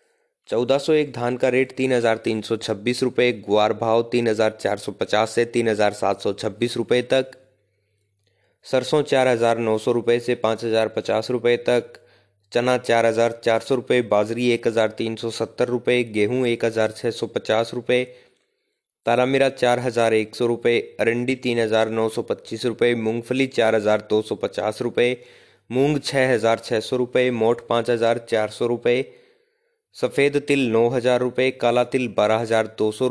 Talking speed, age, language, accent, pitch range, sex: 140 wpm, 20-39, Hindi, native, 110-125 Hz, male